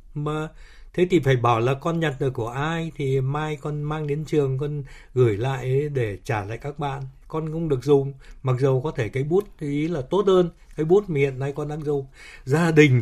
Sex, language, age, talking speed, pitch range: male, Vietnamese, 60-79, 220 wpm, 125-160 Hz